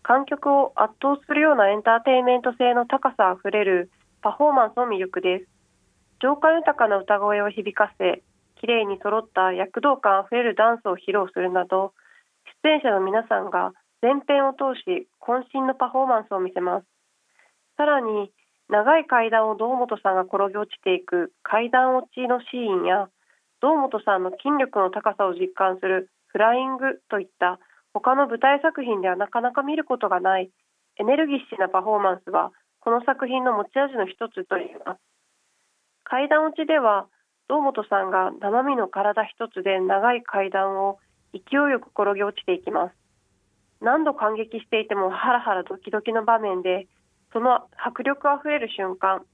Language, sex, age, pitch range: Japanese, female, 30-49, 195-260 Hz